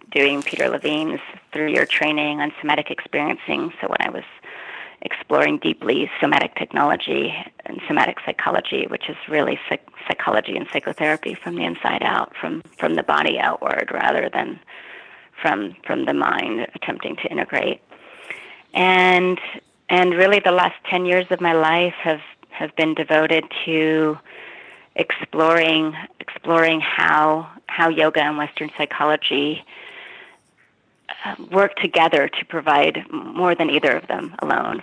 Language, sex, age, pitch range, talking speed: English, female, 30-49, 155-190 Hz, 135 wpm